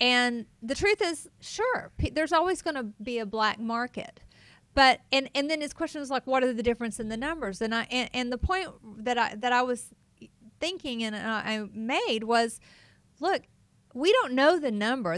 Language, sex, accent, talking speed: English, female, American, 205 wpm